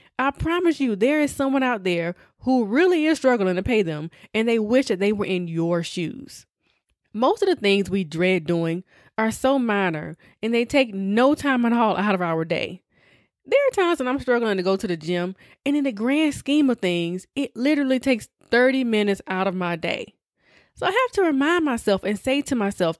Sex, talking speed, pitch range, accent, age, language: female, 215 wpm, 190-270 Hz, American, 20-39, English